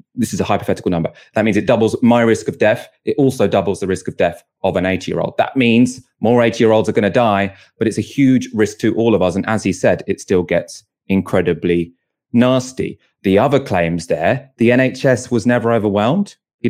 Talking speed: 225 wpm